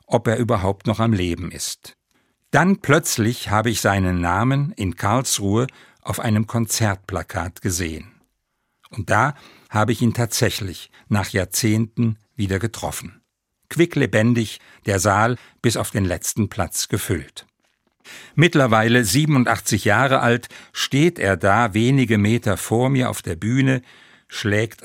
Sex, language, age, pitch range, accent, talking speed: male, German, 60-79, 100-125 Hz, German, 130 wpm